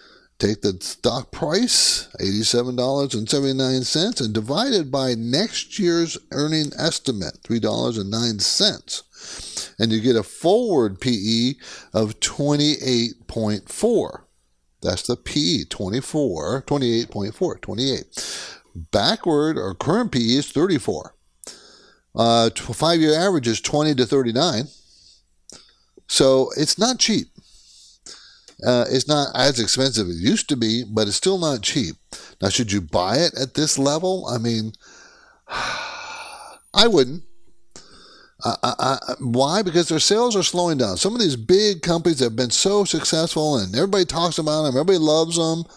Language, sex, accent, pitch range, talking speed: English, male, American, 115-170 Hz, 130 wpm